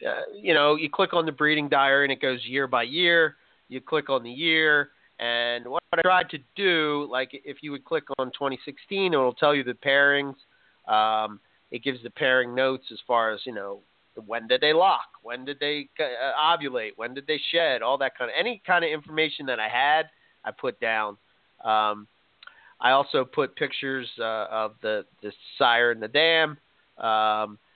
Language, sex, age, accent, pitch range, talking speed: English, male, 30-49, American, 115-150 Hz, 190 wpm